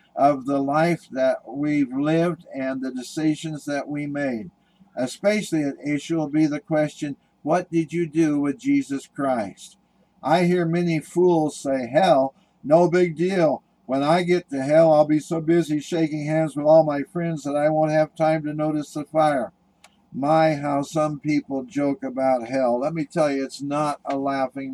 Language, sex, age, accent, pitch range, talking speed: English, male, 60-79, American, 140-165 Hz, 180 wpm